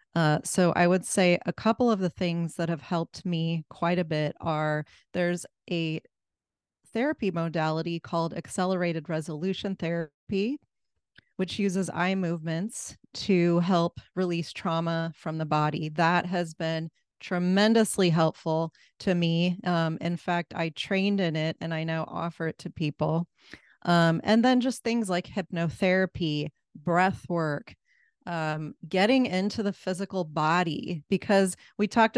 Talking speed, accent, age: 140 wpm, American, 30-49